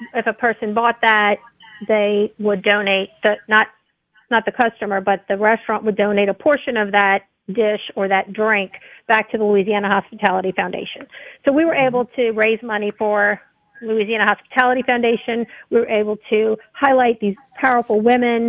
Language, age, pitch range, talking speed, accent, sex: English, 40-59, 205-235 Hz, 165 wpm, American, female